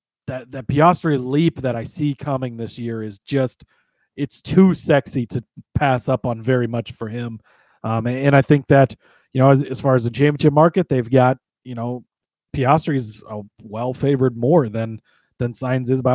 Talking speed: 195 wpm